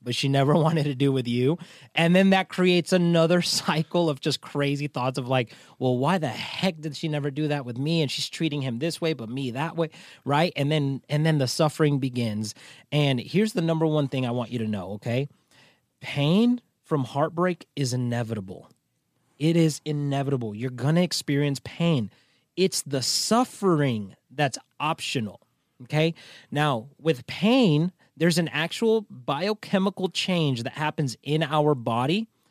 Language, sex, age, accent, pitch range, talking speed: English, male, 30-49, American, 130-170 Hz, 175 wpm